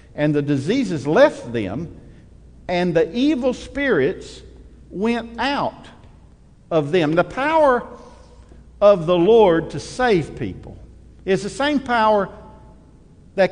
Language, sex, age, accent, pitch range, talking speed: English, male, 50-69, American, 180-245 Hz, 115 wpm